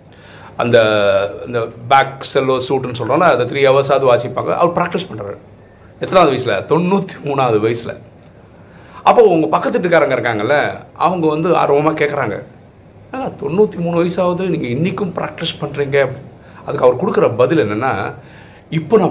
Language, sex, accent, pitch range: Tamil, male, native, 115-160 Hz